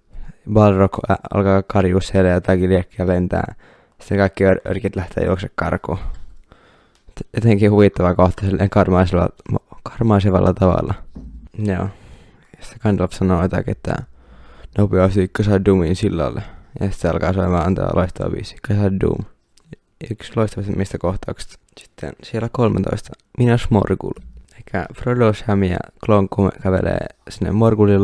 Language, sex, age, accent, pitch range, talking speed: Finnish, male, 20-39, native, 90-105 Hz, 125 wpm